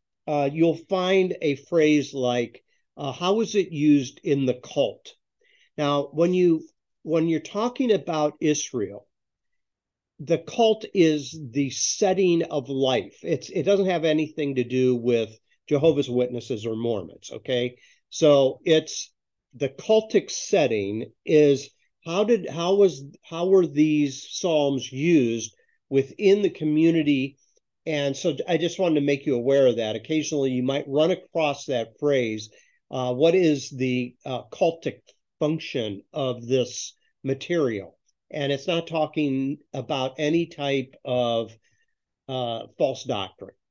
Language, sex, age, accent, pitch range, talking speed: English, male, 50-69, American, 130-170 Hz, 135 wpm